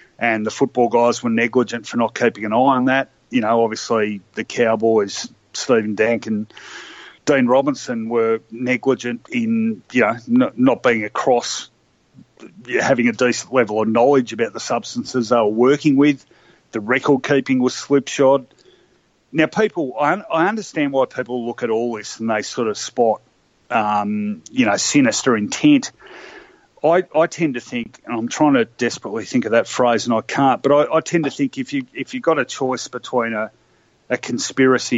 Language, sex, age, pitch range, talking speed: English, male, 30-49, 115-160 Hz, 180 wpm